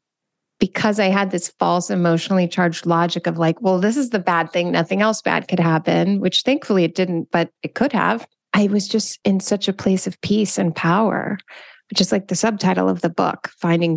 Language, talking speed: English, 210 wpm